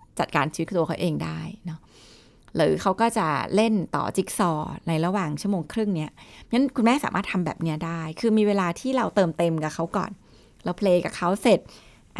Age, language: 20-39, Thai